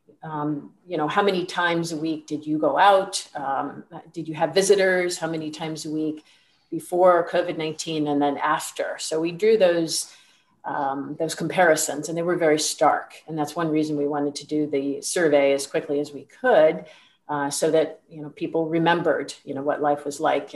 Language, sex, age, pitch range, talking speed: English, female, 50-69, 145-175 Hz, 195 wpm